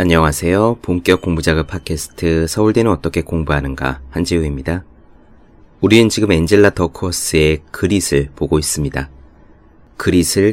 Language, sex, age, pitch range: Korean, male, 30-49, 75-100 Hz